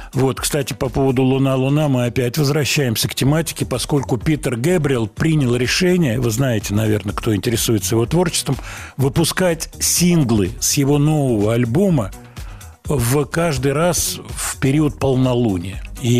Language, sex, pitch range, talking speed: Russian, male, 110-145 Hz, 130 wpm